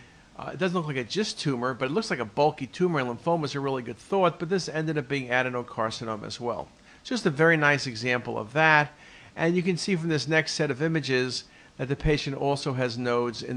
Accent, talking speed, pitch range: American, 230 wpm, 130-170 Hz